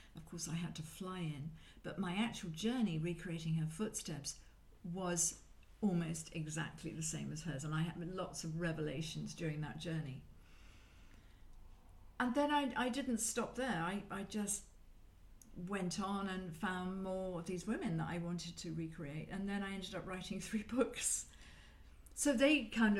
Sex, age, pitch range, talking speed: female, 50-69, 165-210 Hz, 165 wpm